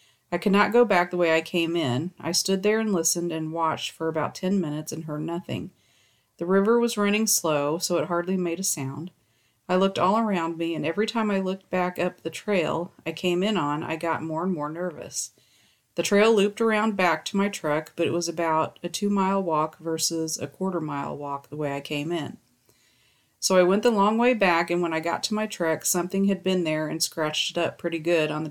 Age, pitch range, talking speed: 40-59, 155-190 Hz, 230 wpm